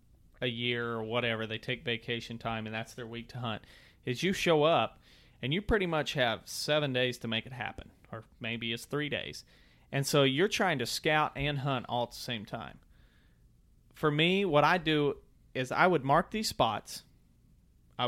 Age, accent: 30-49, American